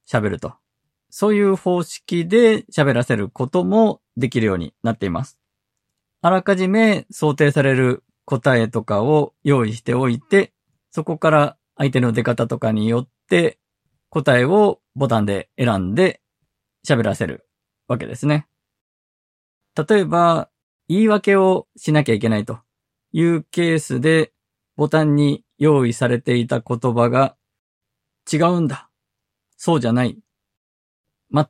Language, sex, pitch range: Japanese, male, 120-165 Hz